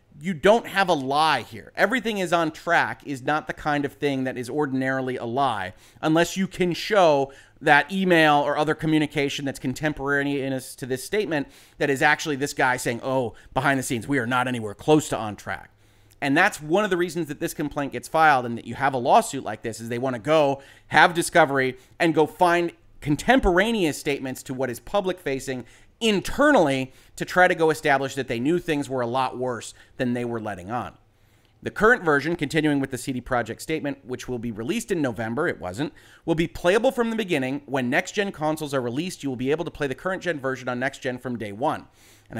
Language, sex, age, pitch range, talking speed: English, male, 30-49, 125-155 Hz, 215 wpm